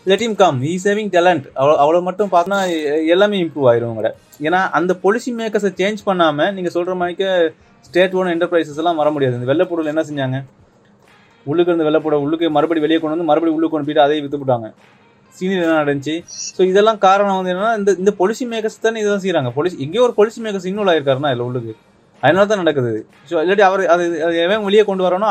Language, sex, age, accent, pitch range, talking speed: Tamil, male, 20-39, native, 150-190 Hz, 190 wpm